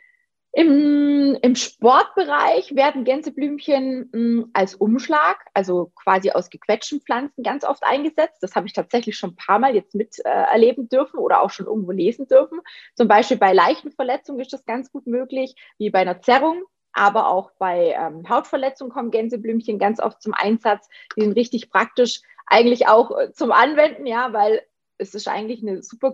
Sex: female